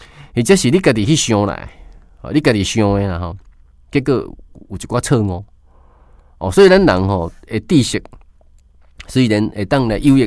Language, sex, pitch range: Chinese, male, 80-120 Hz